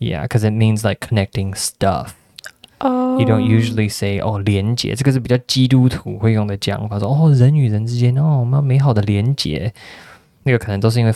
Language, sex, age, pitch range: Chinese, male, 20-39, 105-135 Hz